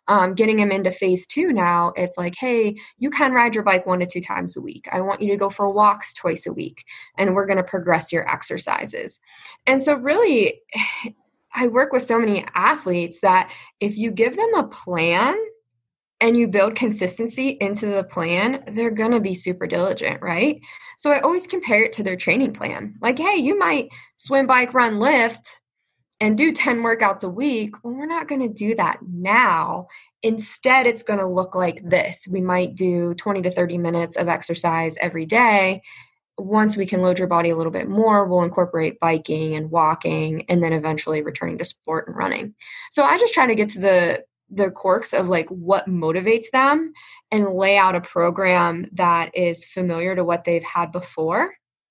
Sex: female